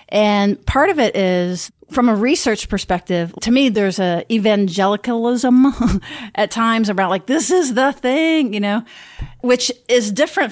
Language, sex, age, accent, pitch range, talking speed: English, female, 40-59, American, 185-225 Hz, 155 wpm